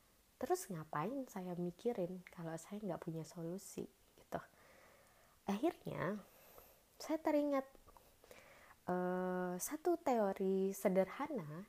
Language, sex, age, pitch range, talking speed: Indonesian, female, 20-39, 165-210 Hz, 85 wpm